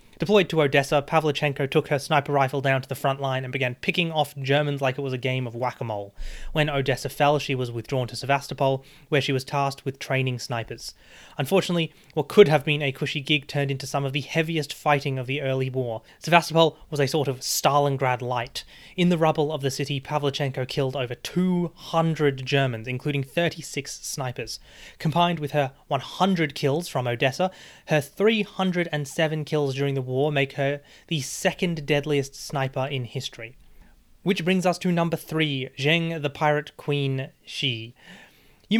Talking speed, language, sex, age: 175 wpm, English, male, 20-39